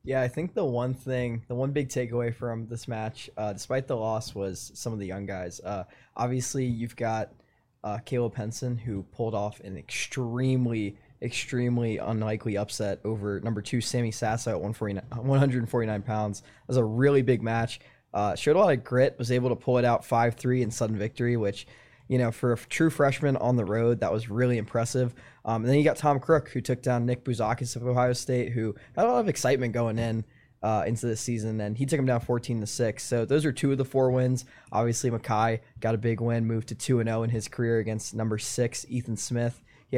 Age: 20-39